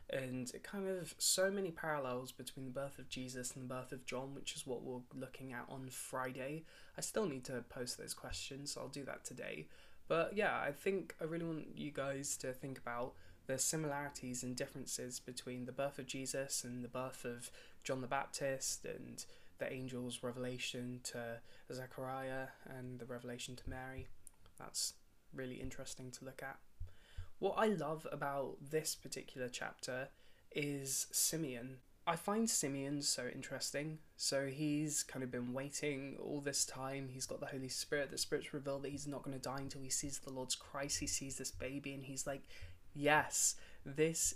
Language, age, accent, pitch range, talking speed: English, 20-39, British, 125-145 Hz, 180 wpm